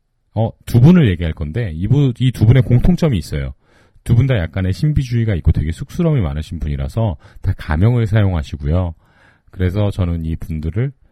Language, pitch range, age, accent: Korean, 80-120 Hz, 40-59, native